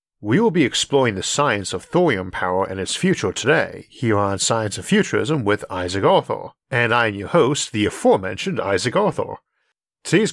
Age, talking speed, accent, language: 50-69, 180 wpm, American, English